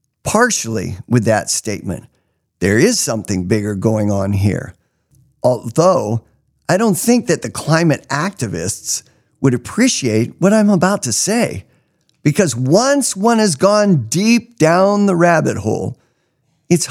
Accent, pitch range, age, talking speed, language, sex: American, 120-200 Hz, 50-69, 130 wpm, English, male